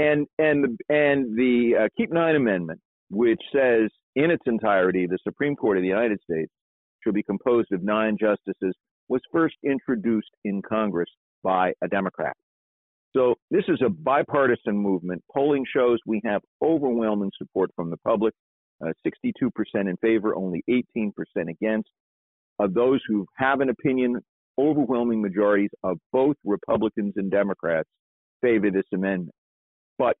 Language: English